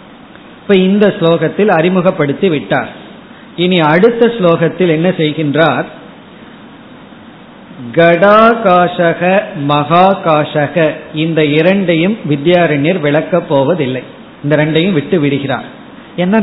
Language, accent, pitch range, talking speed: Tamil, native, 155-195 Hz, 60 wpm